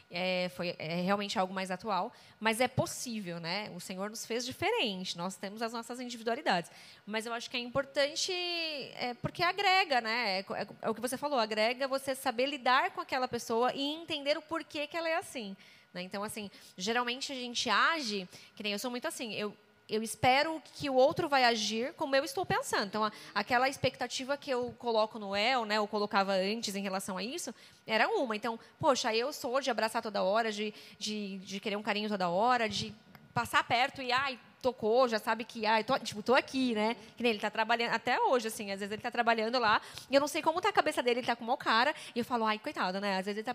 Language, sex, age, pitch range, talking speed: Portuguese, female, 20-39, 215-285 Hz, 225 wpm